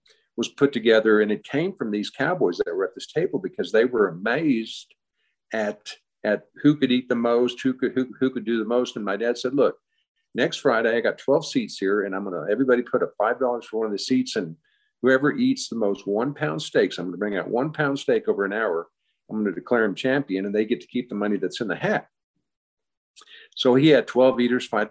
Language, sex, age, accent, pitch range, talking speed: English, male, 50-69, American, 110-140 Hz, 240 wpm